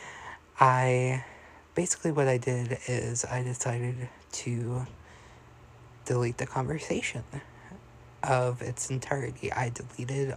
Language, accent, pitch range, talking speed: English, American, 120-130 Hz, 100 wpm